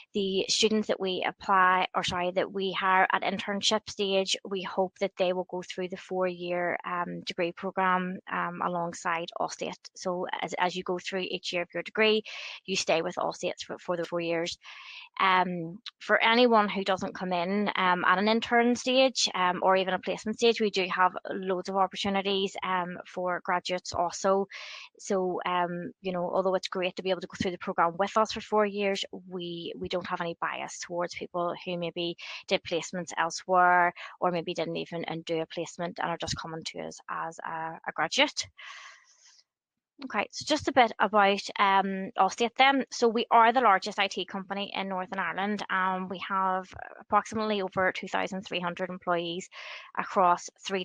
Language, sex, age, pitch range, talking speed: English, female, 20-39, 180-200 Hz, 180 wpm